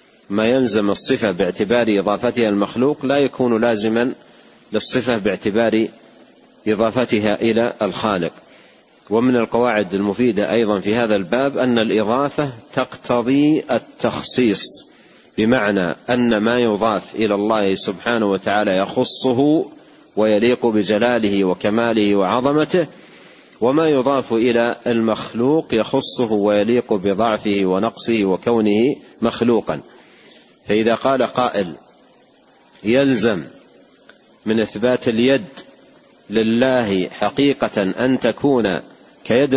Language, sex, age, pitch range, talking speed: Arabic, male, 40-59, 105-125 Hz, 90 wpm